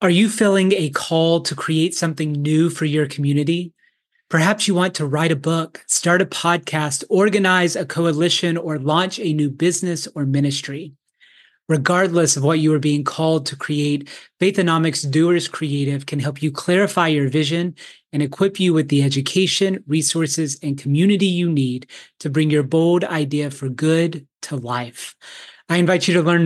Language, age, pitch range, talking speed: English, 30-49, 150-175 Hz, 170 wpm